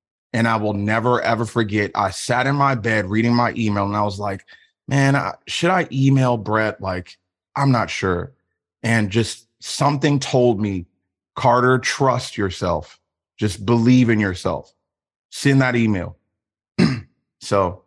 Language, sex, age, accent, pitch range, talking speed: English, male, 30-49, American, 105-125 Hz, 150 wpm